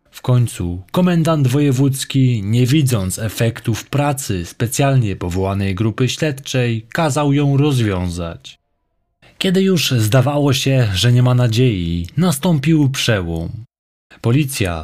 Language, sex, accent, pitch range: Polish, male, native, 110-145 Hz